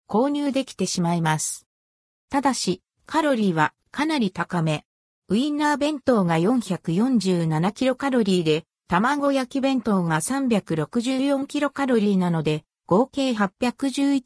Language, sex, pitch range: Japanese, female, 175-265 Hz